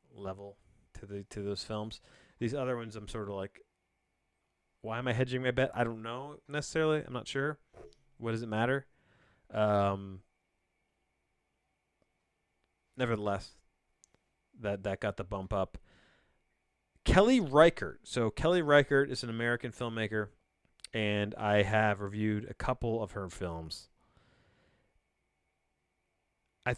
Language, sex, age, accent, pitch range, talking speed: English, male, 30-49, American, 90-120 Hz, 130 wpm